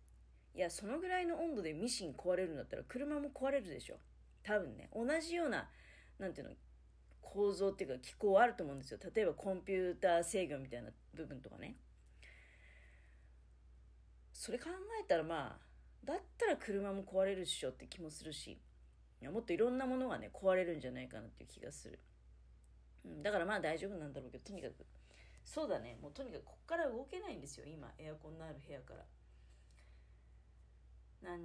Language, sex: Japanese, female